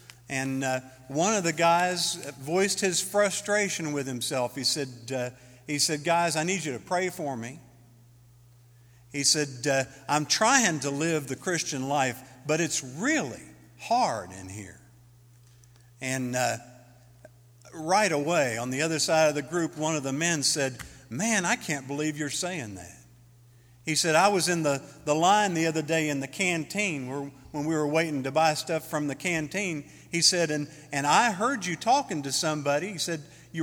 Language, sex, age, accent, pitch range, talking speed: English, male, 50-69, American, 120-165 Hz, 180 wpm